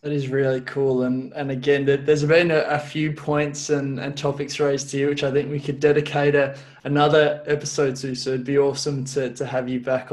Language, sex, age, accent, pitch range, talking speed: English, male, 20-39, Australian, 130-145 Hz, 225 wpm